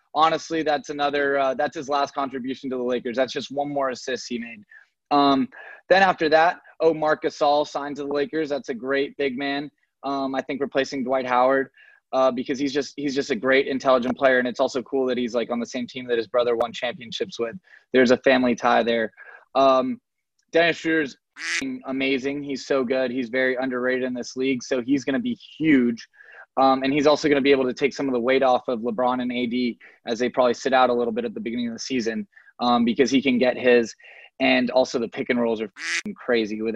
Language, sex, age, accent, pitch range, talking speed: English, male, 20-39, American, 130-145 Hz, 225 wpm